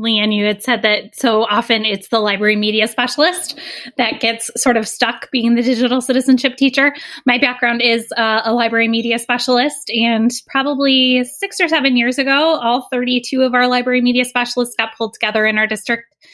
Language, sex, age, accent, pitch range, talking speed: English, female, 10-29, American, 215-265 Hz, 185 wpm